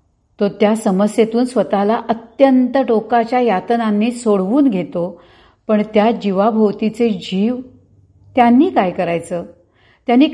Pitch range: 160-230 Hz